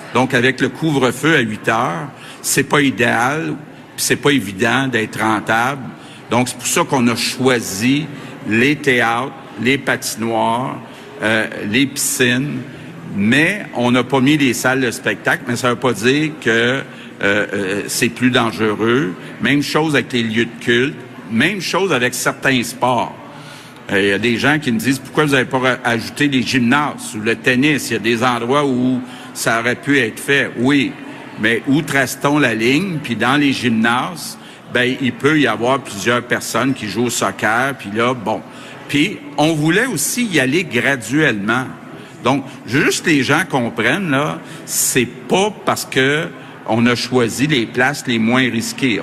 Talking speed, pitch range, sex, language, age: 175 wpm, 115-140 Hz, male, French, 60-79